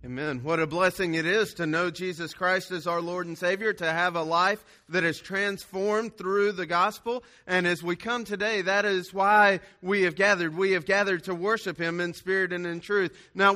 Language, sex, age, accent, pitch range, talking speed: English, male, 30-49, American, 185-210 Hz, 210 wpm